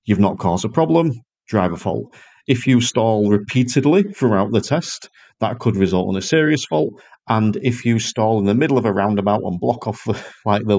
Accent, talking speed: British, 205 wpm